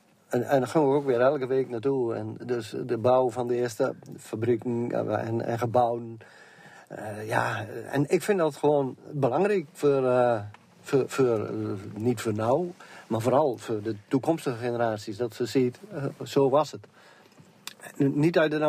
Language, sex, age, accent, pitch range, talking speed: Dutch, male, 50-69, Dutch, 115-145 Hz, 180 wpm